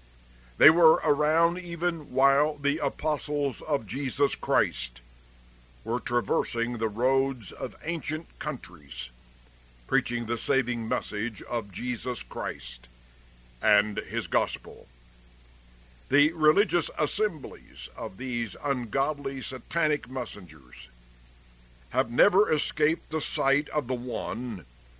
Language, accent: English, American